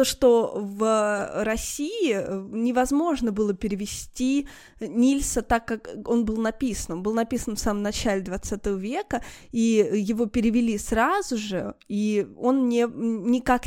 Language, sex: Russian, female